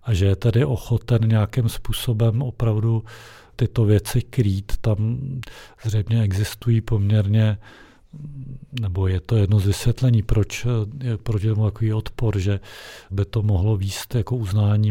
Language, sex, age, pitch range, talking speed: Czech, male, 40-59, 100-115 Hz, 135 wpm